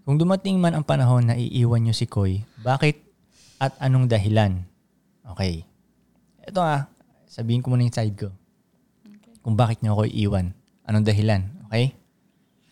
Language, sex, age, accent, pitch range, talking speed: Filipino, male, 20-39, native, 115-155 Hz, 145 wpm